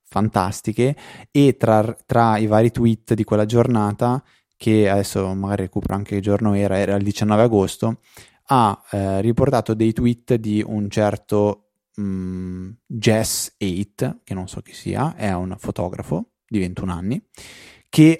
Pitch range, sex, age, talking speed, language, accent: 100-115 Hz, male, 20-39, 145 wpm, Italian, native